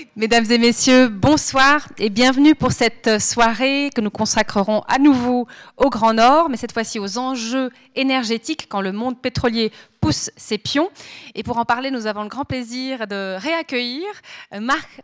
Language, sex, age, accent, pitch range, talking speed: French, female, 30-49, French, 220-280 Hz, 170 wpm